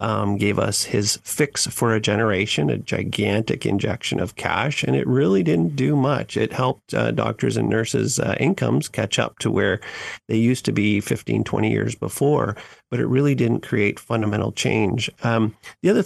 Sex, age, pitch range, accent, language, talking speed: male, 50-69, 105-130 Hz, American, English, 185 wpm